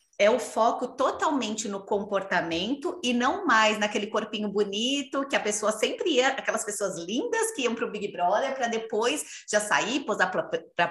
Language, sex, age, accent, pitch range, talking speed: Portuguese, female, 30-49, Brazilian, 180-250 Hz, 175 wpm